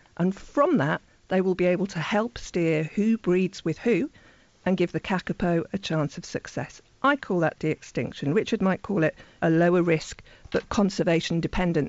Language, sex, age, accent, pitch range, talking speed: English, female, 50-69, British, 170-220 Hz, 180 wpm